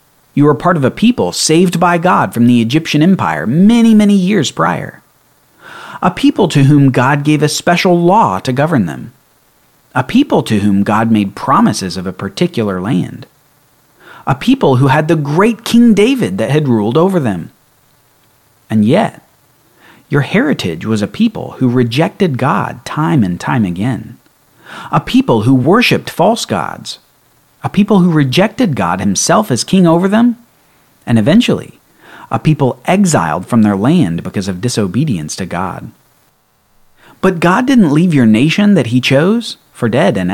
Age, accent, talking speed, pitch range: 40-59, American, 160 wpm, 125-200 Hz